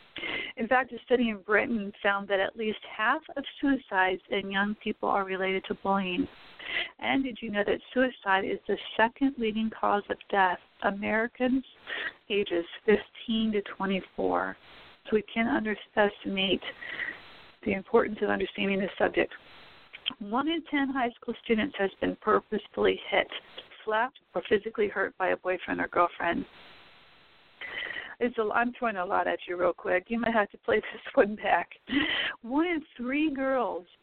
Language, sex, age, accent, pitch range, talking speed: English, female, 40-59, American, 195-245 Hz, 155 wpm